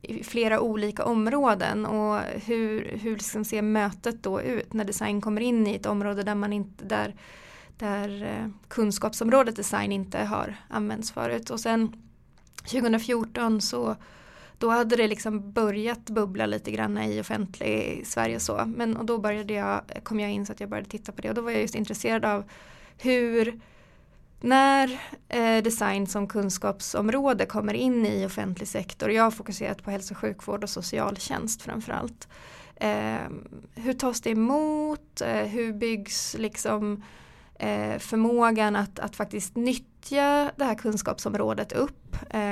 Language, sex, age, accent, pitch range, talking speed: Swedish, female, 20-39, native, 205-230 Hz, 150 wpm